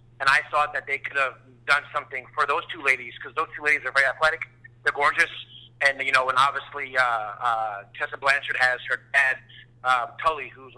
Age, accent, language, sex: 30-49, American, English, male